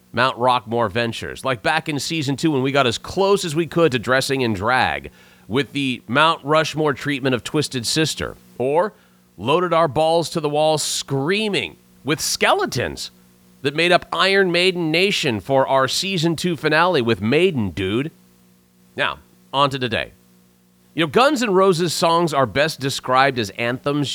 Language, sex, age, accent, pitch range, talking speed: English, male, 40-59, American, 110-160 Hz, 165 wpm